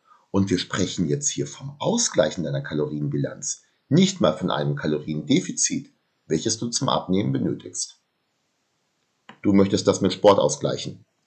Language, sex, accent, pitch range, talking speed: German, male, German, 85-135 Hz, 135 wpm